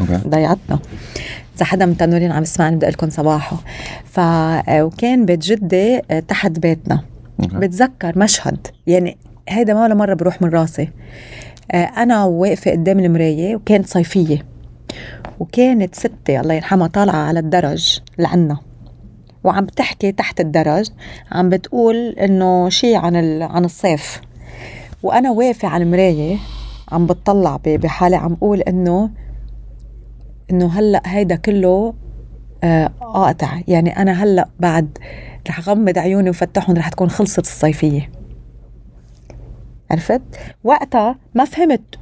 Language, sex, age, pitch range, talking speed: Arabic, female, 30-49, 165-210 Hz, 120 wpm